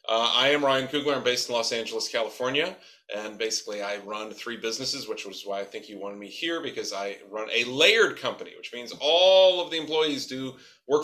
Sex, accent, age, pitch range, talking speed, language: male, American, 30-49, 110-145 Hz, 215 wpm, English